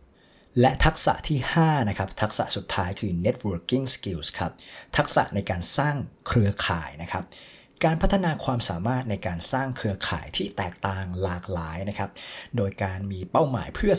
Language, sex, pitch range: Thai, male, 95-130 Hz